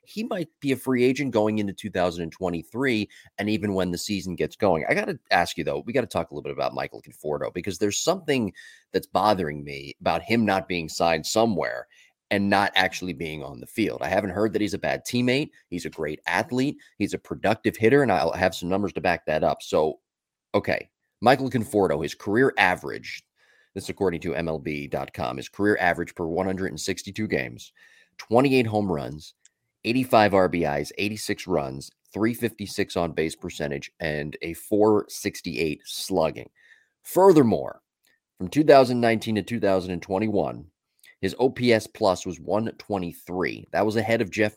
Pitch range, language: 85-110 Hz, English